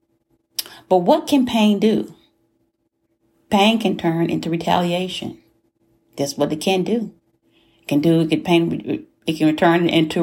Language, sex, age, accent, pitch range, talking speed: English, female, 40-59, American, 155-195 Hz, 115 wpm